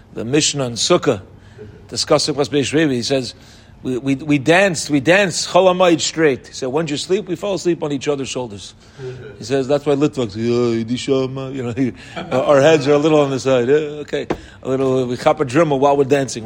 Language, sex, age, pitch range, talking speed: English, male, 40-59, 130-195 Hz, 195 wpm